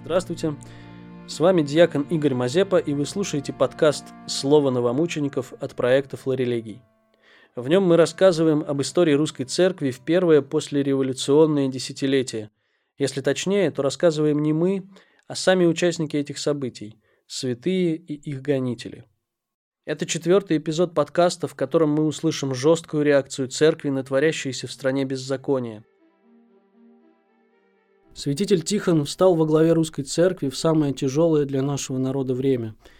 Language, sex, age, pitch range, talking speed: Russian, male, 20-39, 130-160 Hz, 130 wpm